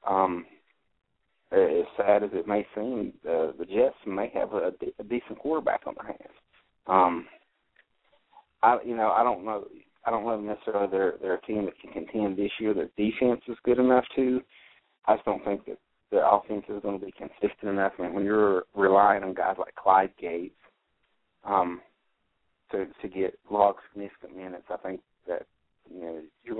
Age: 30-49